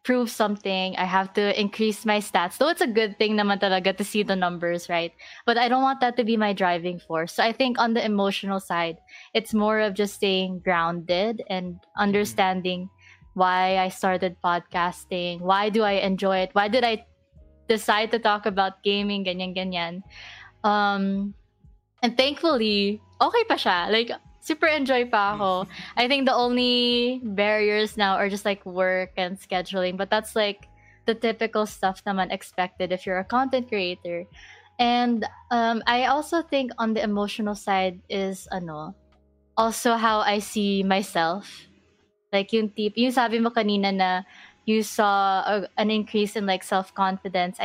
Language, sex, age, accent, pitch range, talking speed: Filipino, female, 20-39, native, 185-225 Hz, 165 wpm